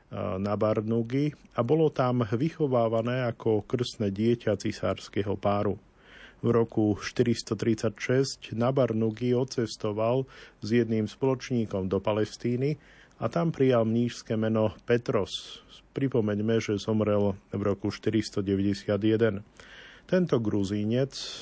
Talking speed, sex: 100 wpm, male